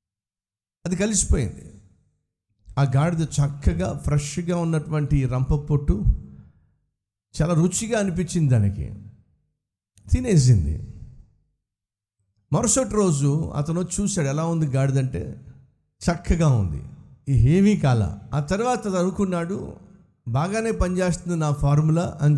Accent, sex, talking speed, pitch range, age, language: native, male, 95 wpm, 115-180 Hz, 50-69, Telugu